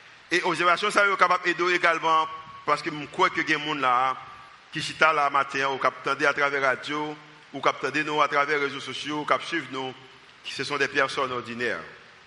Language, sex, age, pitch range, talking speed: French, male, 50-69, 155-190 Hz, 255 wpm